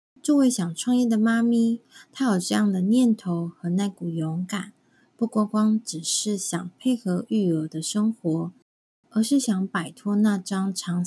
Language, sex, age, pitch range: Chinese, female, 20-39, 175-230 Hz